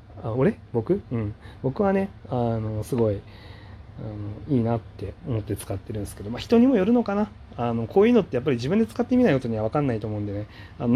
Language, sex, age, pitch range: Japanese, male, 30-49, 105-130 Hz